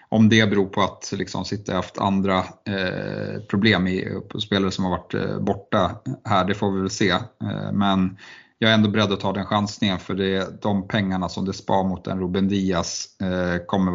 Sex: male